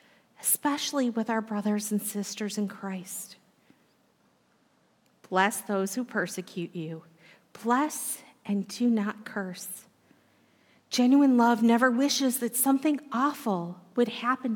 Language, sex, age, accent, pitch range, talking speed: English, female, 40-59, American, 210-300 Hz, 110 wpm